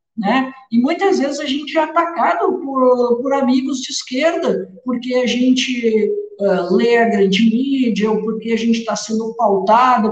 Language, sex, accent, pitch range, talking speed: Portuguese, male, Brazilian, 210-265 Hz, 165 wpm